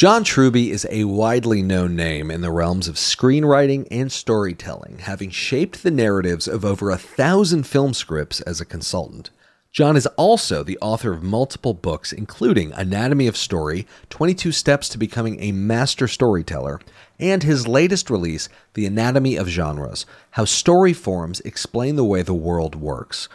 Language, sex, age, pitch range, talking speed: English, male, 40-59, 95-145 Hz, 160 wpm